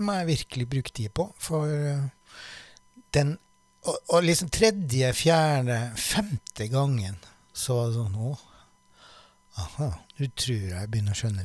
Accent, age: Swedish, 60-79